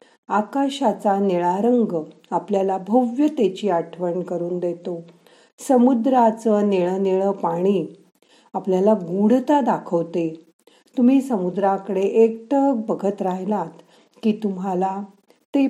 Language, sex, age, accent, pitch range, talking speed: Marathi, female, 50-69, native, 175-235 Hz, 60 wpm